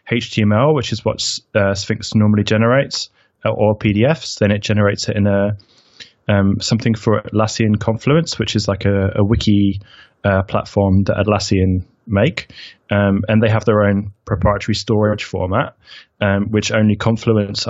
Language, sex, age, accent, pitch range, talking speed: English, male, 20-39, British, 100-110 Hz, 155 wpm